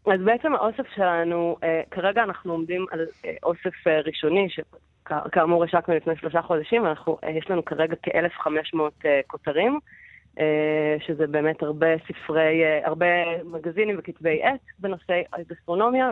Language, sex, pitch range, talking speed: Hebrew, female, 155-180 Hz, 115 wpm